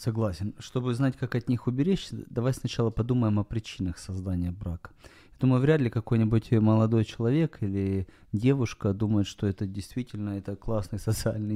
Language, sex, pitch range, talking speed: Ukrainian, male, 105-130 Hz, 155 wpm